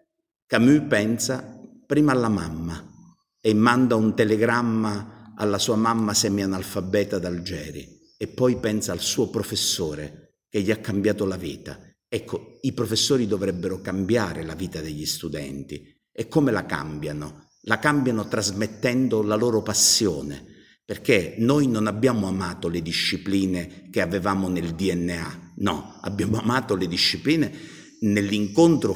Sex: male